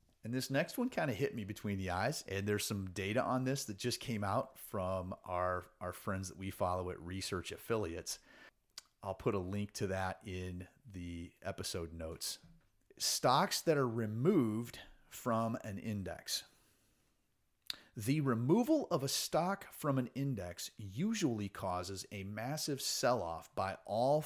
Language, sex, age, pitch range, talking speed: English, male, 30-49, 95-130 Hz, 155 wpm